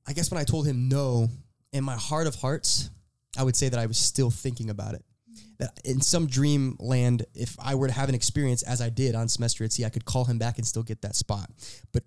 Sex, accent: male, American